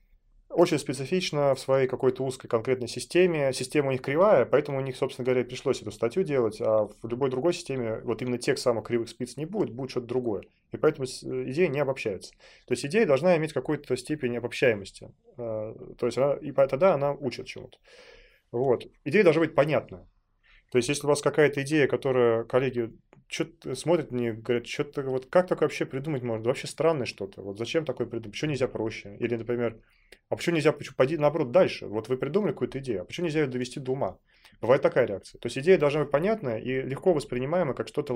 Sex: male